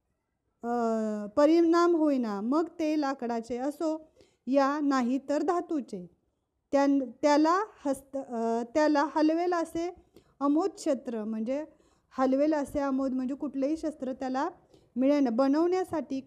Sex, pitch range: female, 240-310 Hz